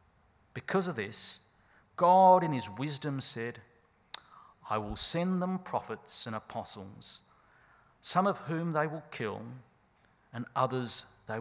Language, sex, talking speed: English, male, 125 wpm